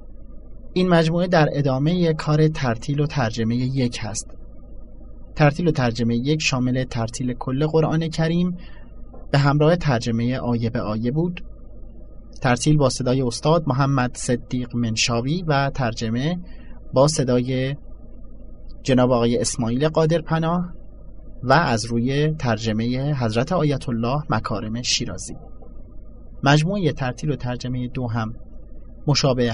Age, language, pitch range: 30-49, Persian, 115-155 Hz